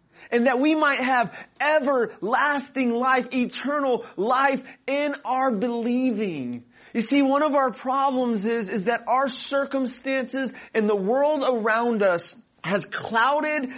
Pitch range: 175-230 Hz